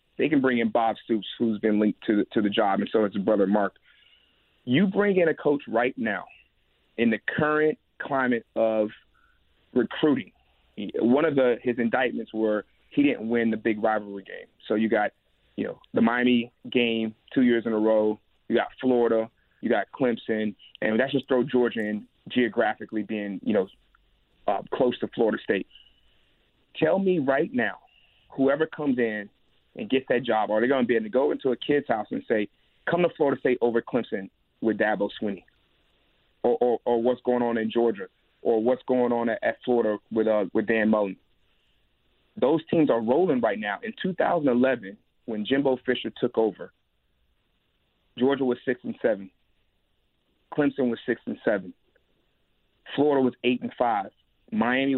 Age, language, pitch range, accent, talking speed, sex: 30-49, English, 110-130 Hz, American, 175 wpm, male